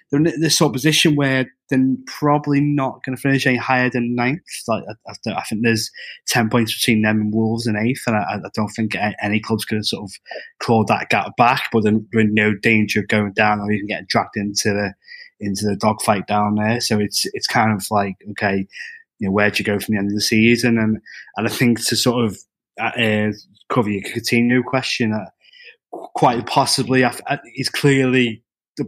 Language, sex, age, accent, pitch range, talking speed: English, male, 20-39, British, 105-120 Hz, 220 wpm